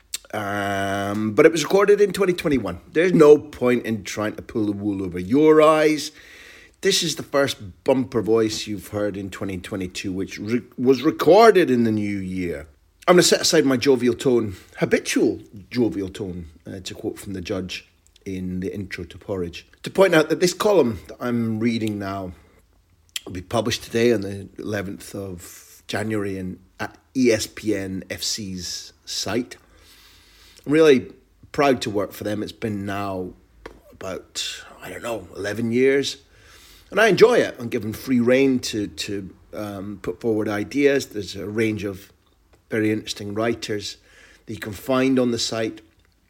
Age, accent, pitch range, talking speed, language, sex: 30-49, British, 90-120 Hz, 165 wpm, English, male